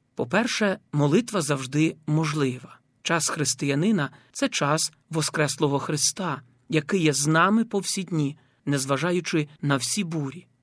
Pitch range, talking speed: 140-180 Hz, 120 wpm